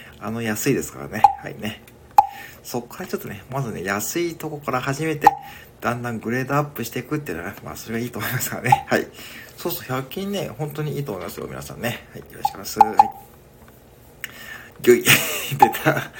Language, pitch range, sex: Japanese, 105-175 Hz, male